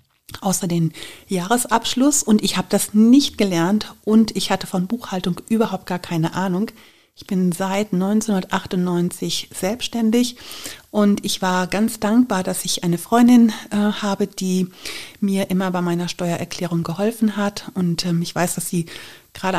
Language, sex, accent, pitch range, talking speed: German, female, German, 170-205 Hz, 150 wpm